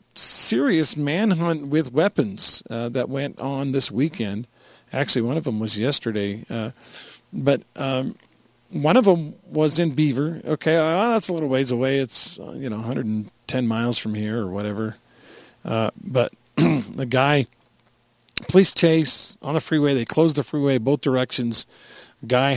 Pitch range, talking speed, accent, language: 115-145 Hz, 150 wpm, American, English